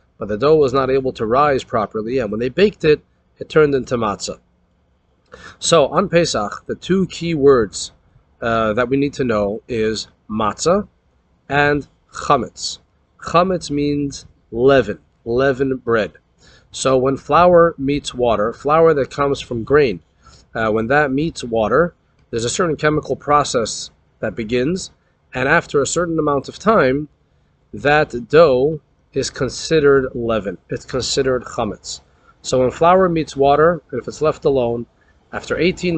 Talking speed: 150 wpm